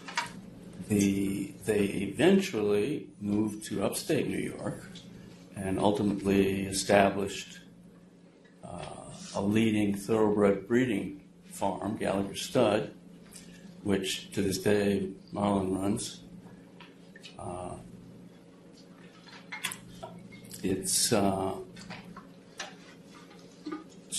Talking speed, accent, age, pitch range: 70 wpm, American, 60-79, 95-105 Hz